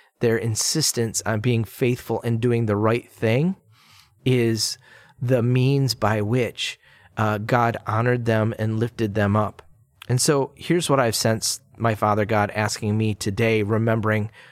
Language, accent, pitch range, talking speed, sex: English, American, 110-125 Hz, 150 wpm, male